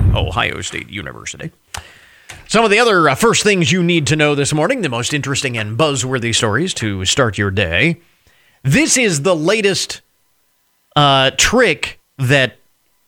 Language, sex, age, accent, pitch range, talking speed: English, male, 40-59, American, 115-165 Hz, 145 wpm